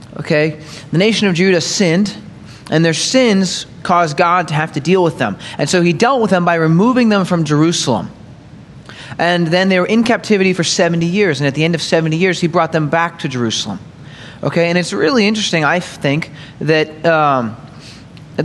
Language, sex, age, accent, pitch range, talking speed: English, male, 30-49, American, 145-175 Hz, 195 wpm